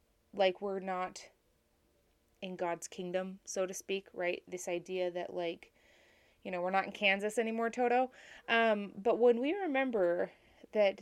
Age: 20-39